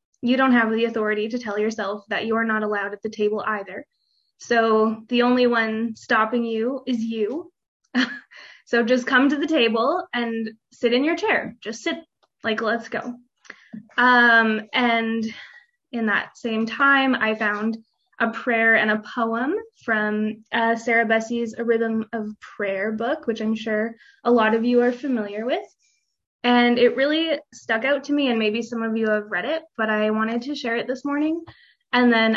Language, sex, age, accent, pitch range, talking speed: English, female, 20-39, American, 220-250 Hz, 180 wpm